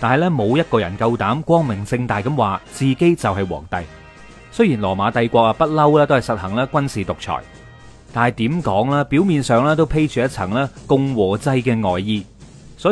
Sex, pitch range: male, 105-145 Hz